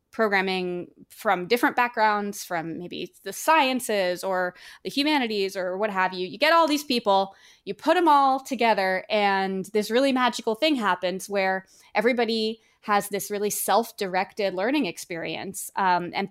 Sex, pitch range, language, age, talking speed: female, 190-230 Hz, English, 20-39, 150 wpm